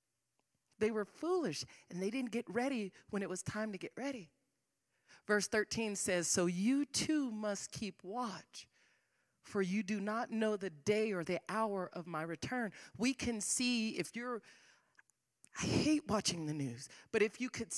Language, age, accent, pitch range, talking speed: English, 40-59, American, 160-240 Hz, 170 wpm